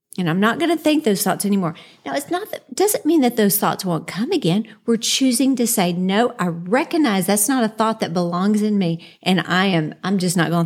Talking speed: 240 wpm